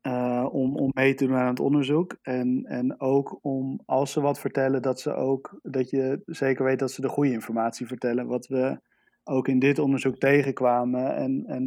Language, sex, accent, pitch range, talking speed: Dutch, male, Dutch, 125-140 Hz, 200 wpm